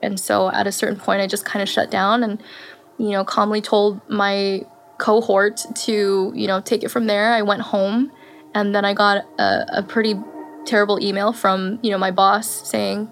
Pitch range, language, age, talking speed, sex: 200-235 Hz, English, 10-29, 200 wpm, female